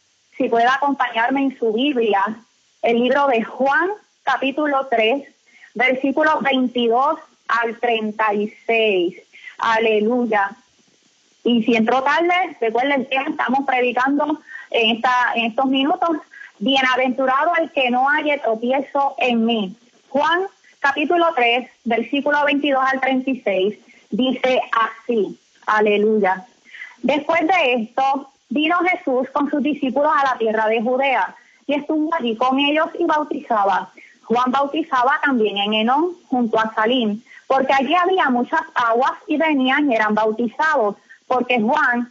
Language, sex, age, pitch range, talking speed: Spanish, female, 20-39, 230-290 Hz, 125 wpm